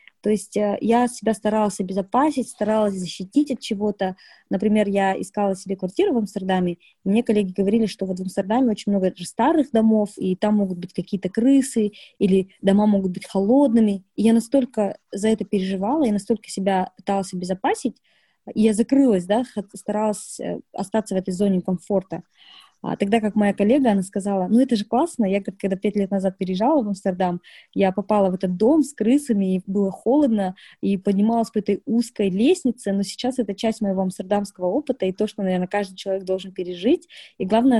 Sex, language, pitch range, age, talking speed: female, Russian, 190-225 Hz, 20-39, 180 wpm